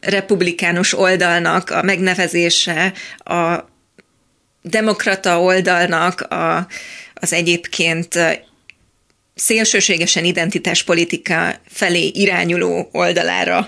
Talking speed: 65 wpm